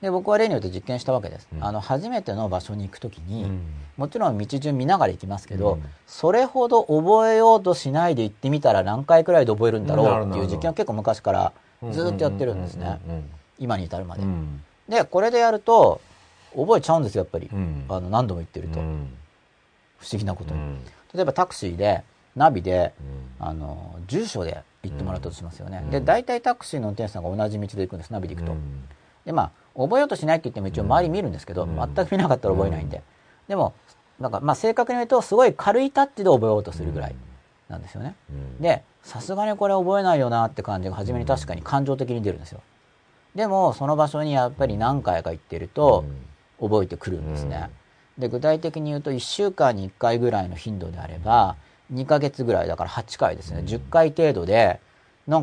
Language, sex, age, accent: Japanese, male, 40-59, native